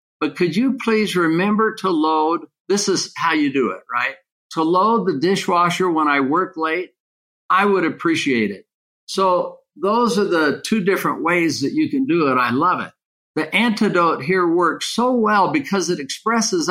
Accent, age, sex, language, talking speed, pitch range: American, 60-79, male, English, 180 wpm, 165-225 Hz